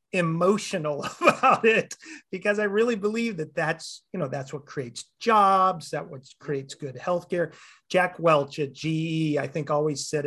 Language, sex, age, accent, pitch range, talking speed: English, male, 40-59, American, 150-190 Hz, 165 wpm